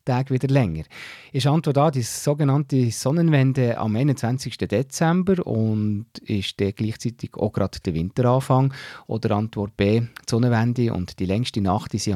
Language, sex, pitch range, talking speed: German, male, 100-135 Hz, 155 wpm